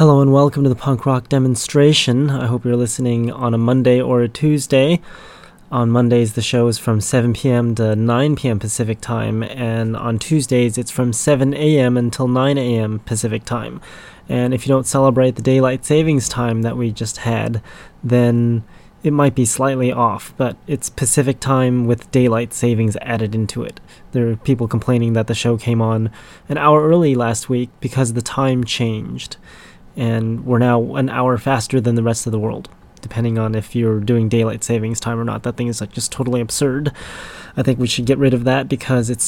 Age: 20-39